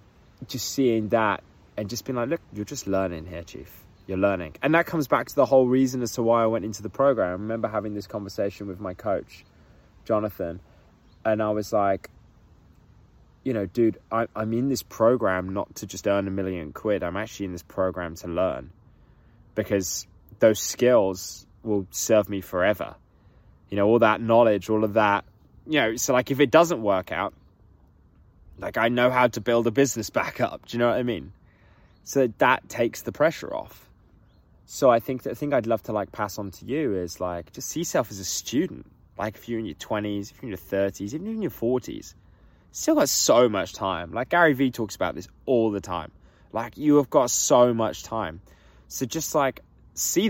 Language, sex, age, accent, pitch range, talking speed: English, male, 20-39, British, 95-120 Hz, 205 wpm